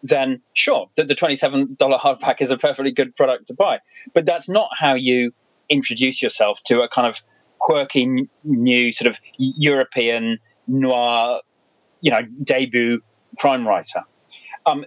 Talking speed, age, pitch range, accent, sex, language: 145 wpm, 30-49, 120-150 Hz, British, male, English